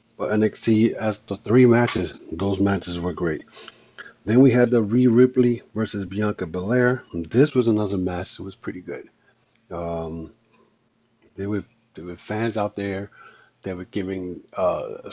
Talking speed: 145 wpm